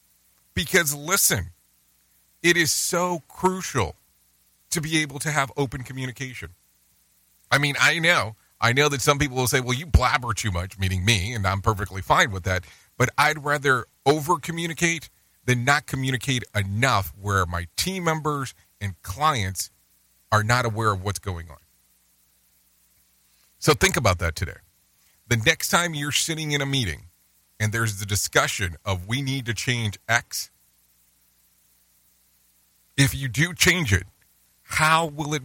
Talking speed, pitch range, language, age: 150 wpm, 80-130 Hz, English, 40-59